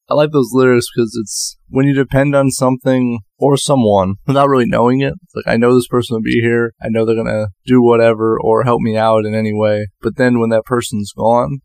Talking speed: 235 wpm